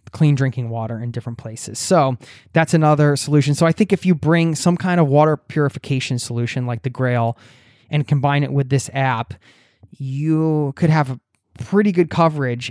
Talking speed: 180 wpm